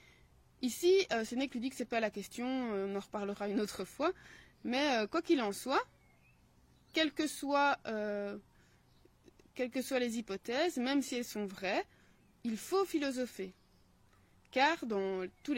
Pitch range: 200-265 Hz